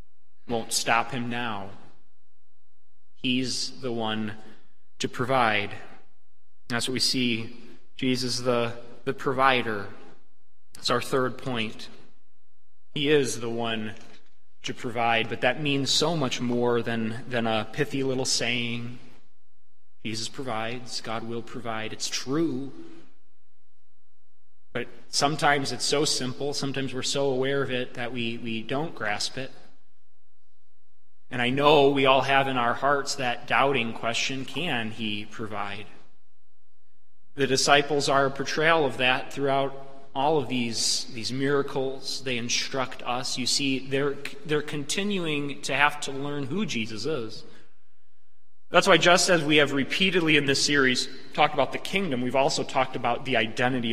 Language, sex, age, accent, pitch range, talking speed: English, male, 20-39, American, 110-135 Hz, 140 wpm